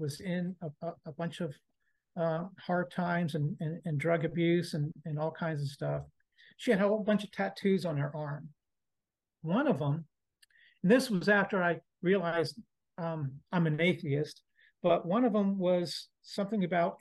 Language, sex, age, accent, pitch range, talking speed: English, male, 50-69, American, 165-210 Hz, 180 wpm